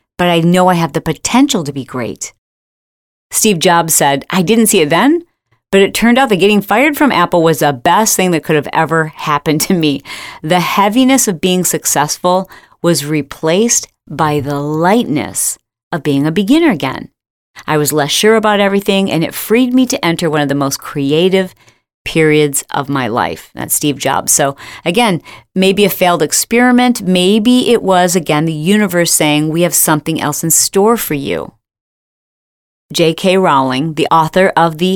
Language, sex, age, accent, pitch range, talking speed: English, female, 40-59, American, 150-205 Hz, 180 wpm